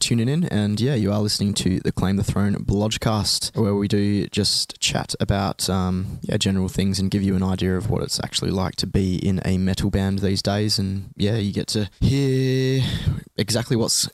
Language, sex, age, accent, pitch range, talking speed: English, male, 20-39, Australian, 95-110 Hz, 205 wpm